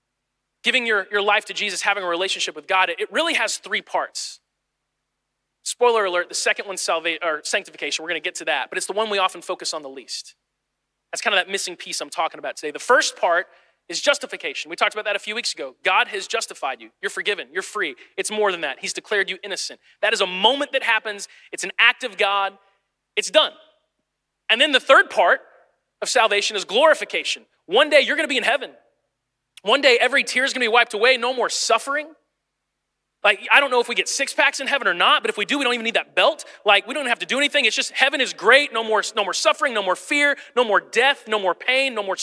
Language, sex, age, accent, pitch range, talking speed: English, male, 30-49, American, 200-275 Hz, 245 wpm